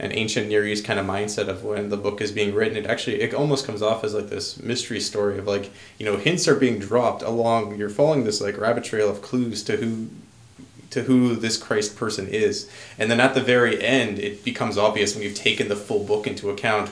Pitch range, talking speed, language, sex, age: 105-120 Hz, 235 wpm, English, male, 20-39